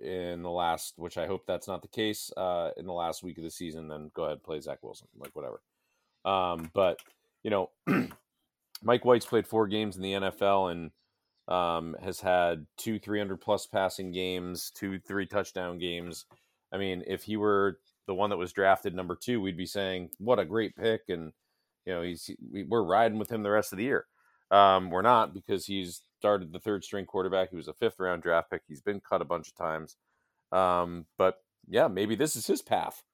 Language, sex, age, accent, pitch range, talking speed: English, male, 40-59, American, 85-100 Hz, 205 wpm